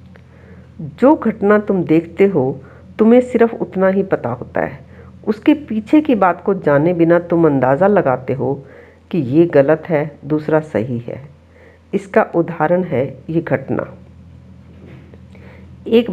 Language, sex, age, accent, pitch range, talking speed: Hindi, female, 50-69, native, 155-200 Hz, 135 wpm